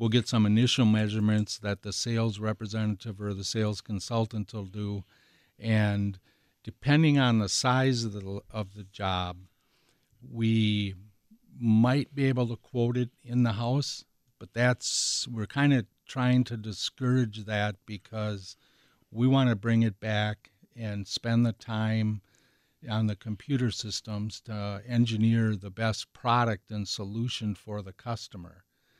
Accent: American